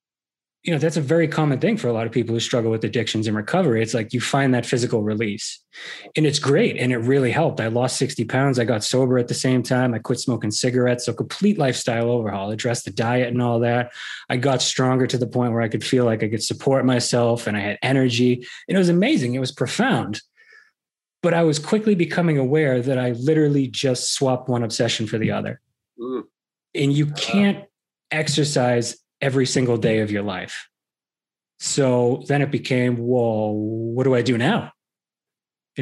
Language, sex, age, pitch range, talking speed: English, male, 20-39, 120-140 Hz, 200 wpm